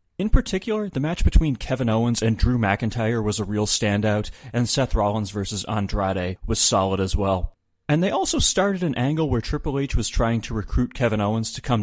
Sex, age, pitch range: male, 30-49, 100-130 Hz